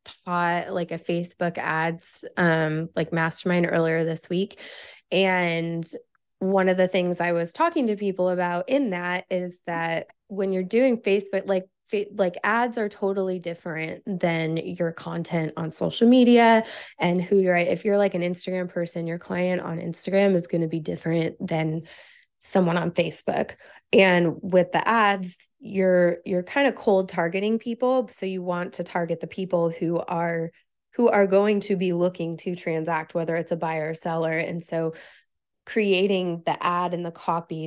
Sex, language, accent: female, English, American